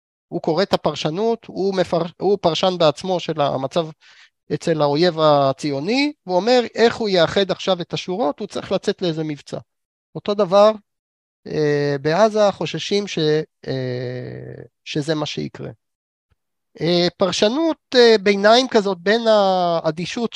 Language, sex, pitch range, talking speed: Hebrew, male, 150-205 Hz, 120 wpm